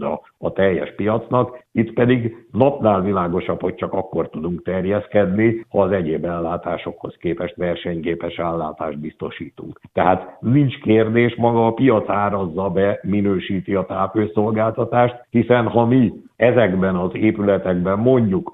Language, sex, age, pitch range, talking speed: Hungarian, male, 60-79, 85-110 Hz, 125 wpm